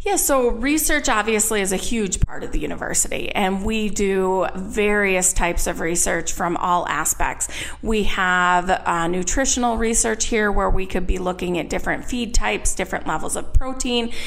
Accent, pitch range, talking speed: American, 190-240 Hz, 170 wpm